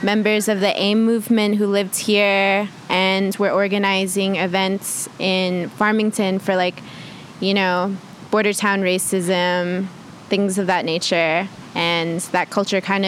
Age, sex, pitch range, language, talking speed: 20-39, female, 185-210 Hz, English, 135 wpm